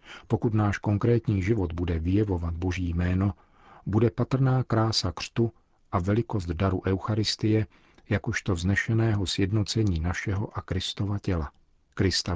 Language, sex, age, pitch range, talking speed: Czech, male, 50-69, 85-110 Hz, 115 wpm